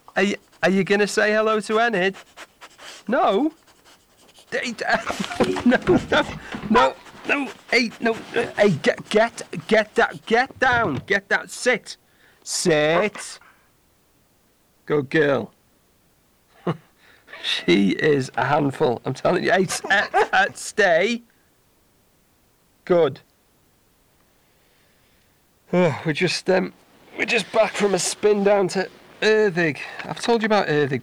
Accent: British